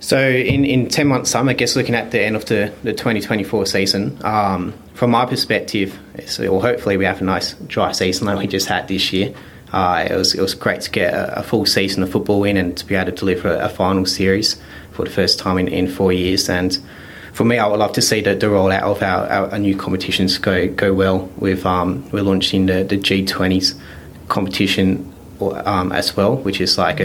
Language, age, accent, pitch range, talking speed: English, 20-39, Australian, 95-100 Hz, 225 wpm